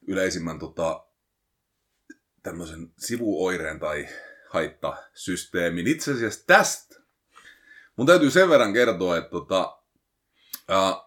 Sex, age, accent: male, 30-49, native